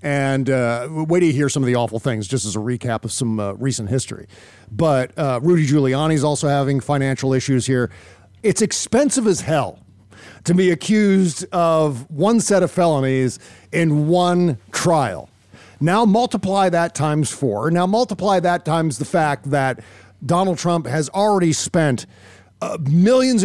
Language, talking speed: English, 160 wpm